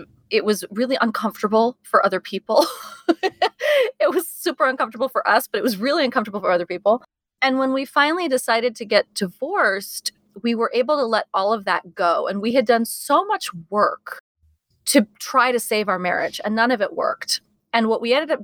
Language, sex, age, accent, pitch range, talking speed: English, female, 30-49, American, 195-250 Hz, 200 wpm